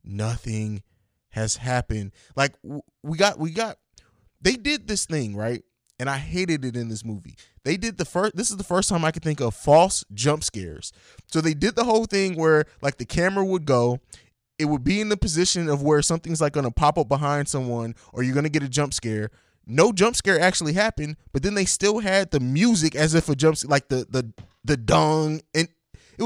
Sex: male